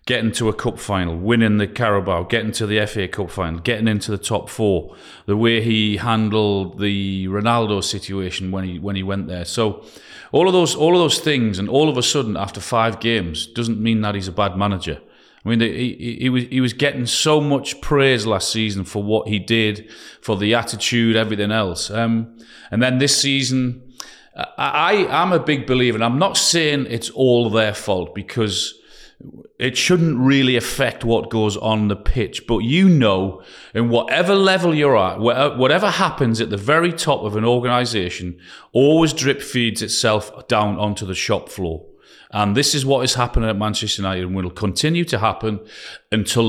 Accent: British